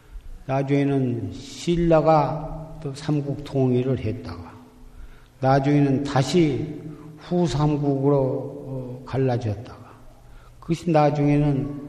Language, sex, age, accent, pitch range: Korean, male, 50-69, native, 115-135 Hz